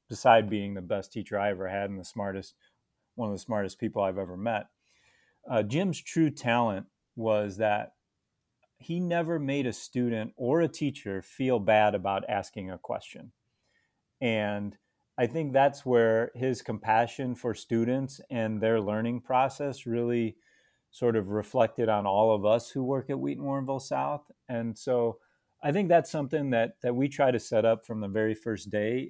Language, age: English, 30-49